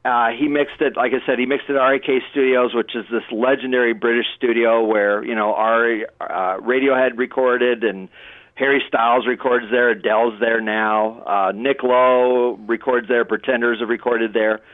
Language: English